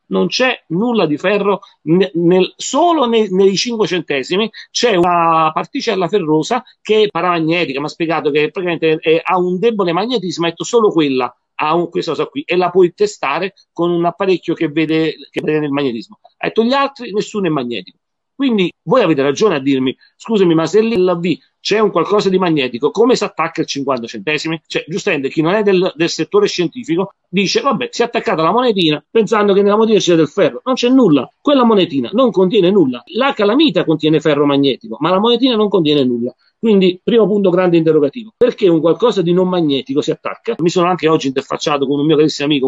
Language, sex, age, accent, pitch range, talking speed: Italian, male, 40-59, native, 155-215 Hz, 200 wpm